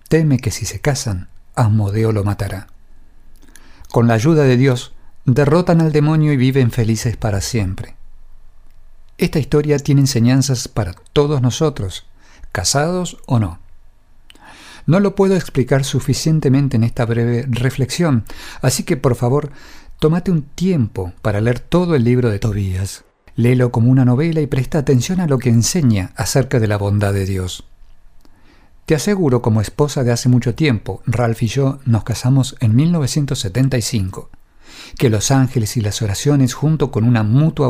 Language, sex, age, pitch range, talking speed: English, male, 50-69, 105-135 Hz, 155 wpm